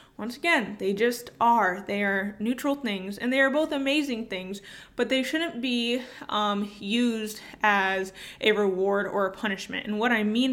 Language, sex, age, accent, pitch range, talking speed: English, female, 20-39, American, 195-240 Hz, 175 wpm